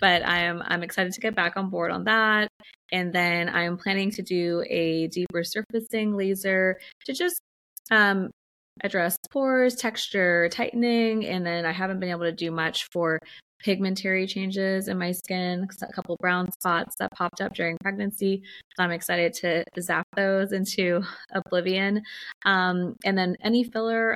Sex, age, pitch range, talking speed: female, 20-39, 165-195 Hz, 160 wpm